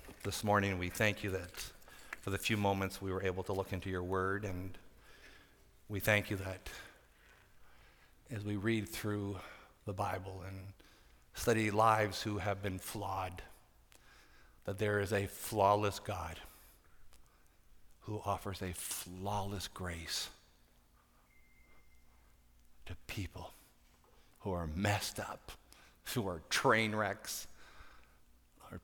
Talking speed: 120 wpm